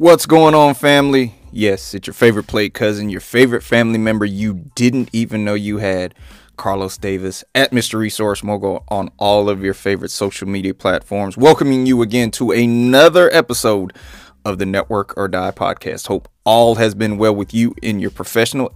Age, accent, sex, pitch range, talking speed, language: 20-39, American, male, 100-130 Hz, 180 wpm, English